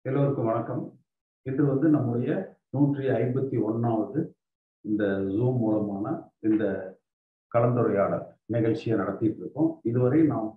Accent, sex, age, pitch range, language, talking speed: native, male, 50-69, 110-160 Hz, Tamil, 100 wpm